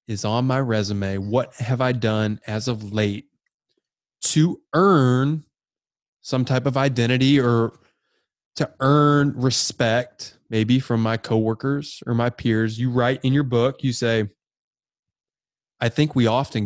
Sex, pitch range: male, 105-130 Hz